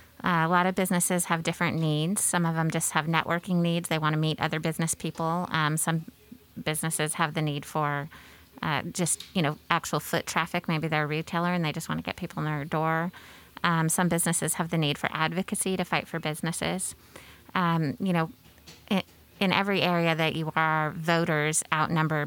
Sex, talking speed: female, 200 wpm